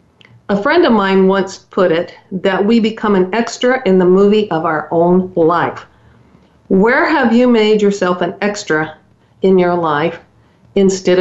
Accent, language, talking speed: American, English, 160 wpm